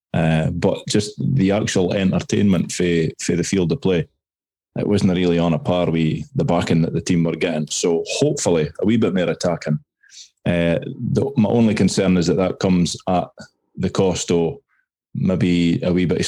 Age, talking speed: 20-39, 185 wpm